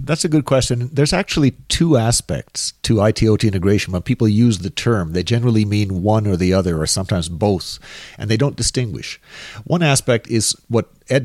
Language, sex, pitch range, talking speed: English, male, 100-125 Hz, 185 wpm